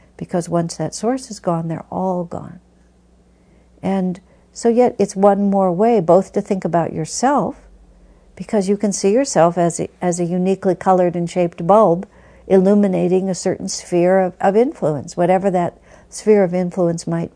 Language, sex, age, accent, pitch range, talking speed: English, female, 60-79, American, 155-200 Hz, 165 wpm